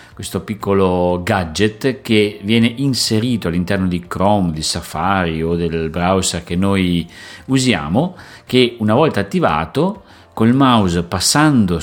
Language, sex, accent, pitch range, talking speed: Italian, male, native, 90-120 Hz, 120 wpm